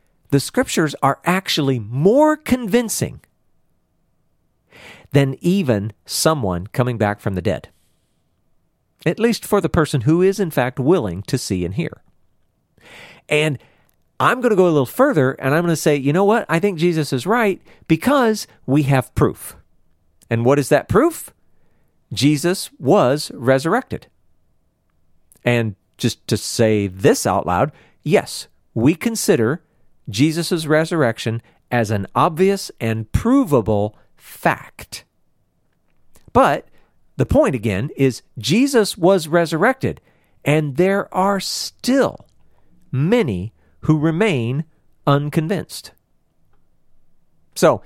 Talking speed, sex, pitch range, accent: 120 wpm, male, 110-185 Hz, American